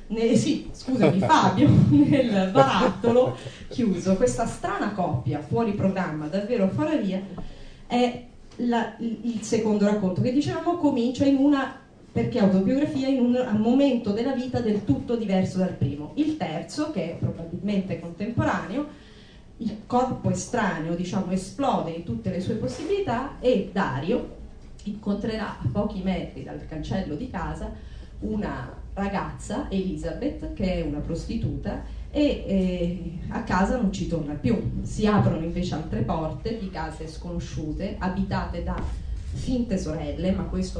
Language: Italian